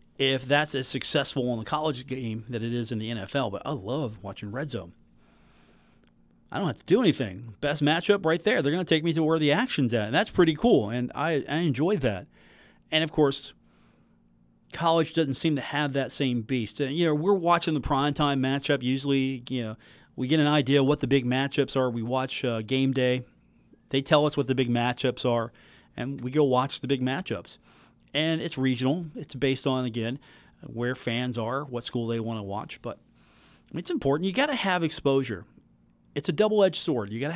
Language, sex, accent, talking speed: English, male, American, 215 wpm